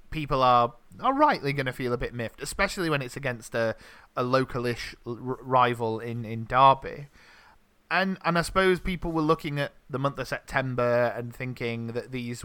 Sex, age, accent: male, 30-49, British